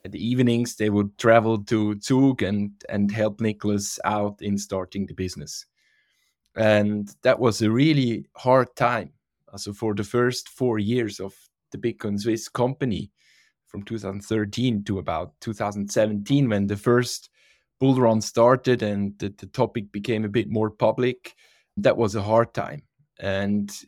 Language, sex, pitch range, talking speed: English, male, 100-120 Hz, 155 wpm